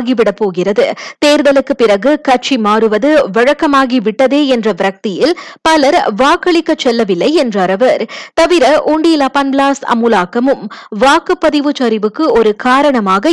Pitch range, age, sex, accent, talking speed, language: 225-290 Hz, 20-39, female, native, 95 wpm, Tamil